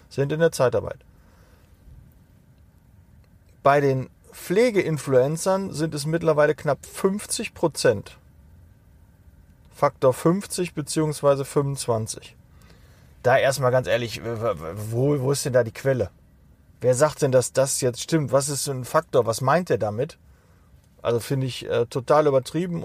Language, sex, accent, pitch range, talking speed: German, male, German, 115-160 Hz, 130 wpm